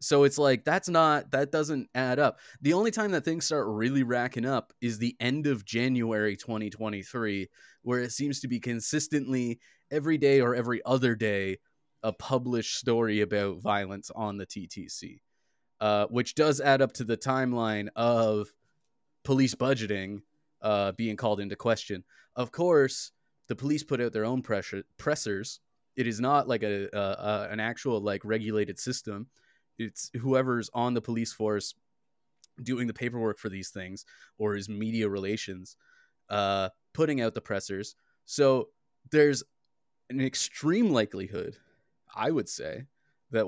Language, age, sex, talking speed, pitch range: English, 20-39, male, 155 wpm, 110-135 Hz